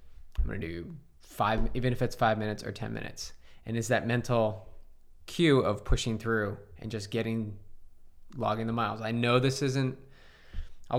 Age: 20-39